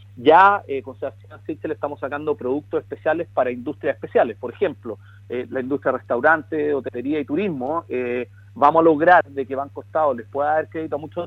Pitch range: 120-155 Hz